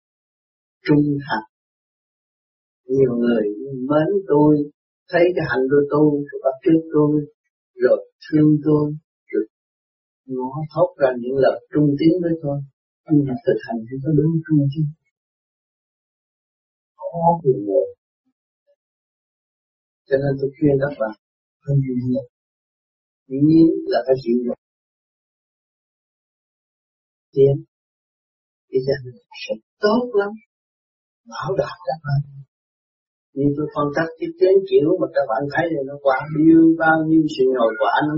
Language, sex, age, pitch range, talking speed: Vietnamese, male, 50-69, 135-170 Hz, 100 wpm